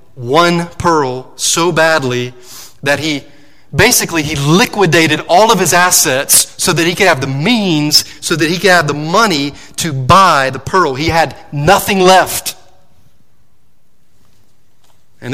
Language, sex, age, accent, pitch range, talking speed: English, male, 30-49, American, 145-190 Hz, 140 wpm